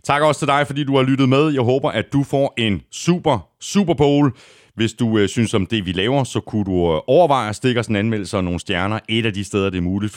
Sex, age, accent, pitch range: male, 30-49, native, 85-130 Hz